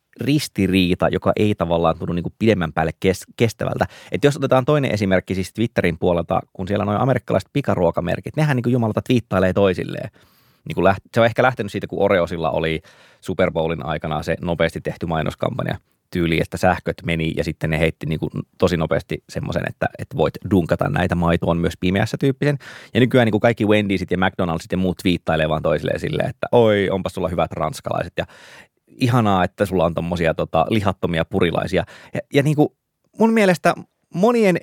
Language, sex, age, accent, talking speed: Finnish, male, 20-39, native, 175 wpm